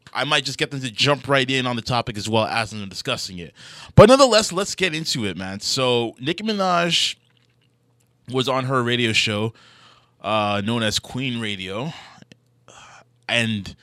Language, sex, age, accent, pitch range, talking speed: English, male, 20-39, American, 115-140 Hz, 170 wpm